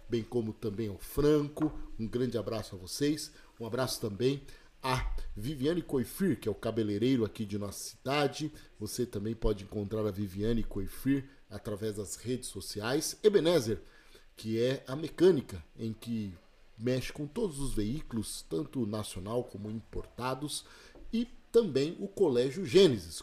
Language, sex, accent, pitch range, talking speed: Portuguese, male, Brazilian, 110-145 Hz, 145 wpm